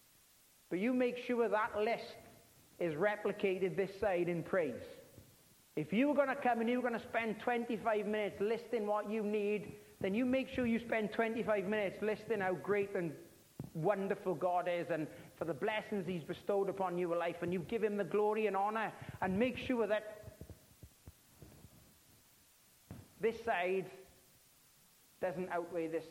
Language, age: English, 40-59